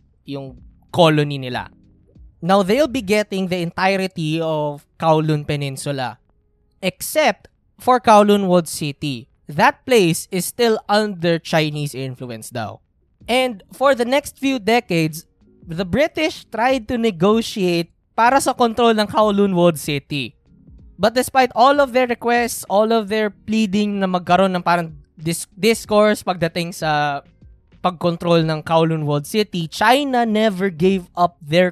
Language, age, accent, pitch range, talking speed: Filipino, 20-39, native, 150-210 Hz, 130 wpm